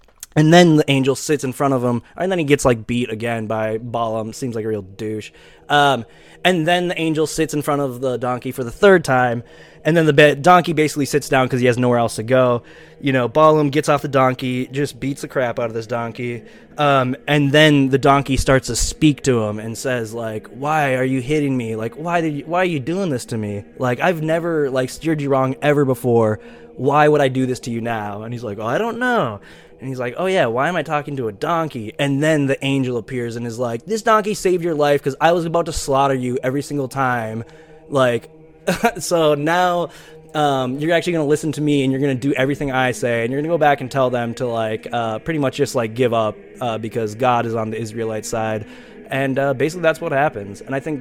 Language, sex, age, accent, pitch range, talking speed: English, male, 20-39, American, 120-155 Hz, 245 wpm